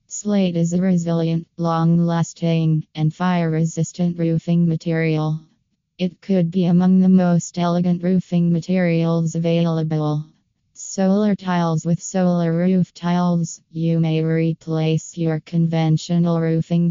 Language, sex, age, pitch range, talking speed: English, female, 20-39, 160-175 Hz, 110 wpm